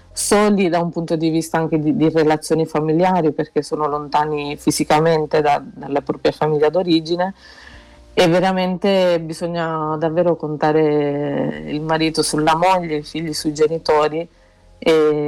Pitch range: 150-170 Hz